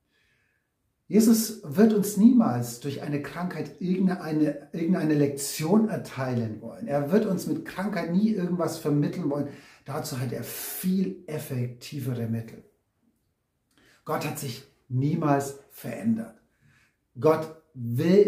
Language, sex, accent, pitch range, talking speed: German, male, German, 130-180 Hz, 115 wpm